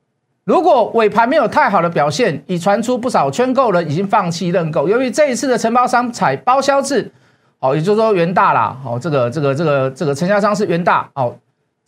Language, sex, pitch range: Chinese, male, 170-245 Hz